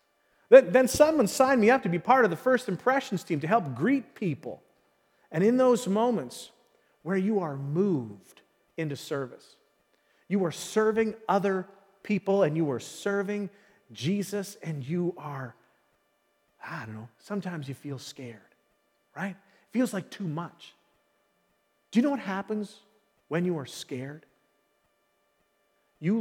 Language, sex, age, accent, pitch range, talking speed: English, male, 40-59, American, 135-200 Hz, 145 wpm